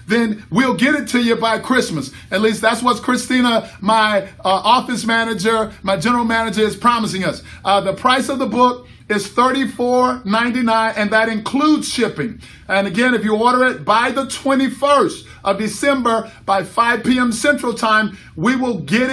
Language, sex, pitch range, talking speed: English, male, 220-250 Hz, 170 wpm